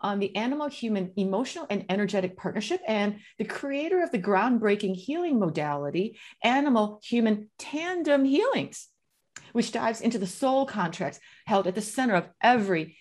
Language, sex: English, female